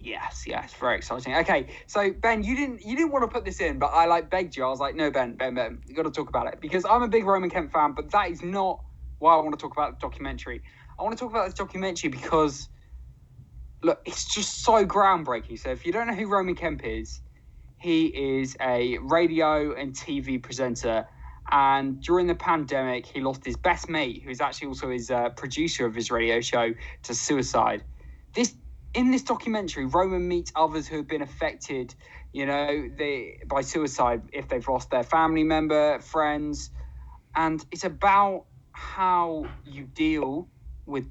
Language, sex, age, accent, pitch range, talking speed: English, male, 20-39, British, 125-170 Hz, 195 wpm